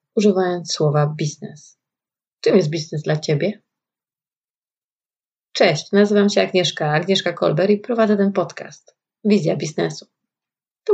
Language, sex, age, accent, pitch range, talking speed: Polish, female, 30-49, native, 170-215 Hz, 115 wpm